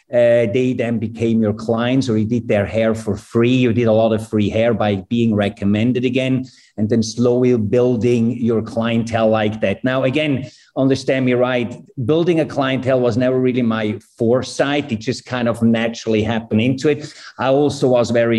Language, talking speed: English, 185 wpm